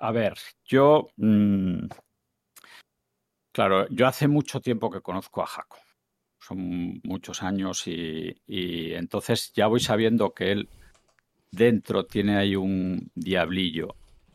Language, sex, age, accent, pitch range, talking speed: Spanish, male, 50-69, Spanish, 90-120 Hz, 120 wpm